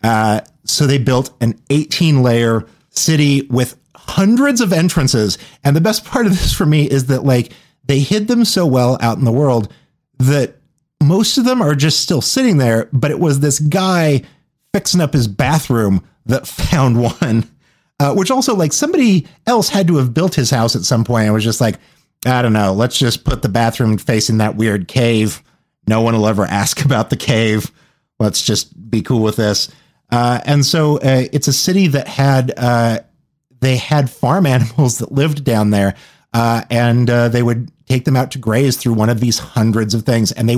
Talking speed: 200 wpm